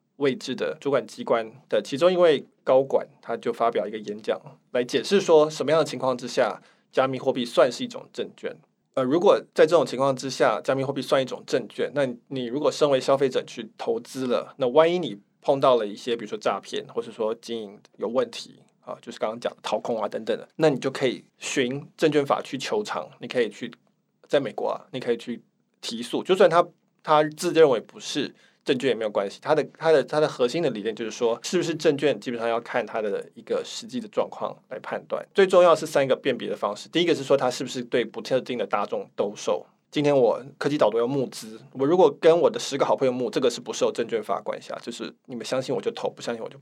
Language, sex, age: Chinese, male, 20-39